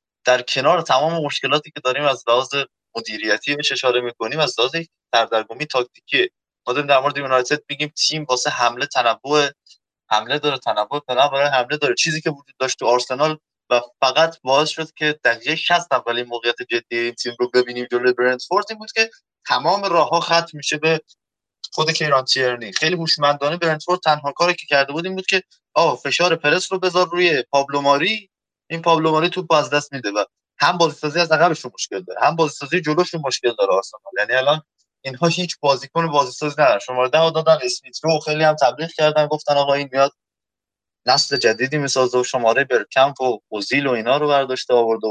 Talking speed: 185 wpm